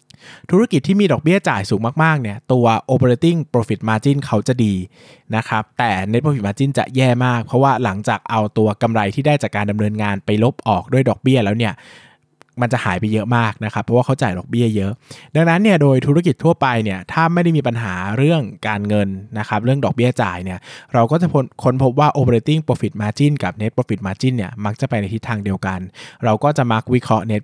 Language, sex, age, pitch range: Thai, male, 20-39, 105-140 Hz